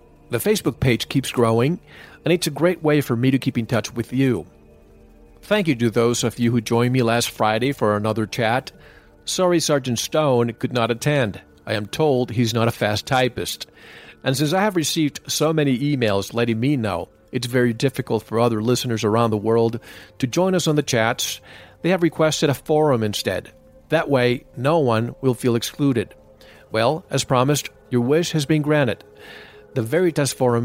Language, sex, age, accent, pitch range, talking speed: English, male, 40-59, American, 115-150 Hz, 190 wpm